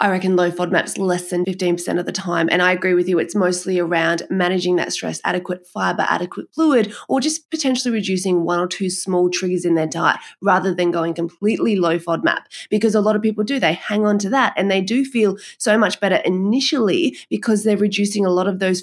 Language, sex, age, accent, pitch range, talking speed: English, female, 20-39, Australian, 180-215 Hz, 220 wpm